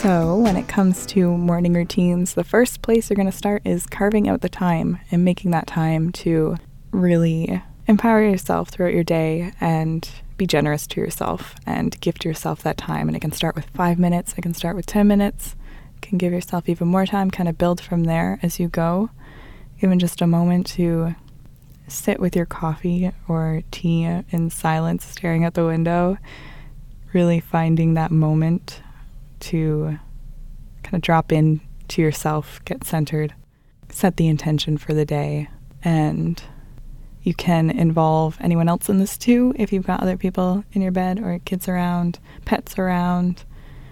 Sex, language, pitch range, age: female, English, 155-185 Hz, 20-39